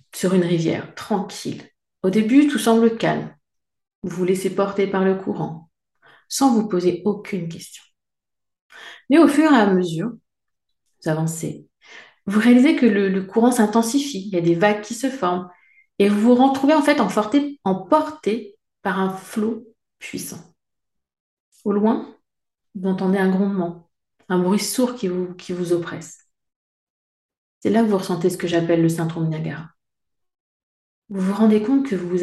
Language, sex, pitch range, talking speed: French, female, 180-225 Hz, 165 wpm